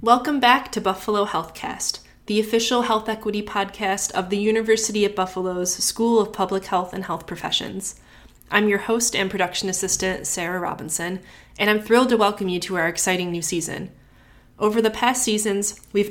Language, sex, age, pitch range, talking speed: English, female, 20-39, 180-220 Hz, 170 wpm